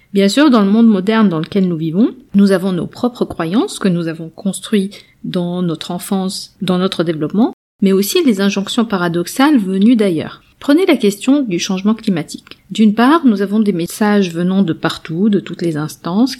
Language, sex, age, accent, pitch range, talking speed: French, female, 40-59, French, 175-225 Hz, 185 wpm